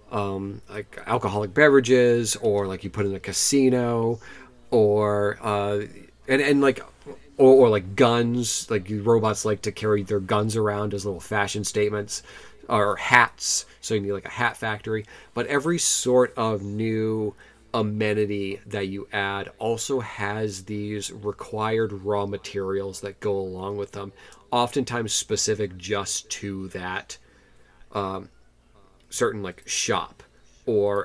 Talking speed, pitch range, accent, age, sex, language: 135 wpm, 100-115 Hz, American, 30-49, male, English